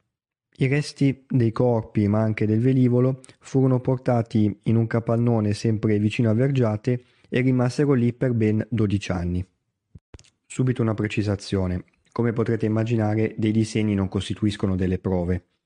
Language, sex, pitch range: Italian, male, 100-125 Hz